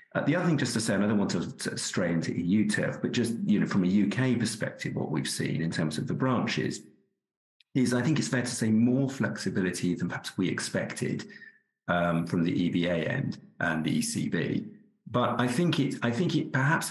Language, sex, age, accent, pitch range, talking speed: English, male, 50-69, British, 90-125 Hz, 215 wpm